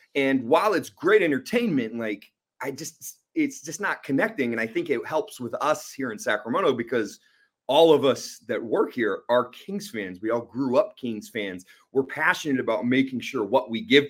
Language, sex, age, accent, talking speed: English, male, 30-49, American, 195 wpm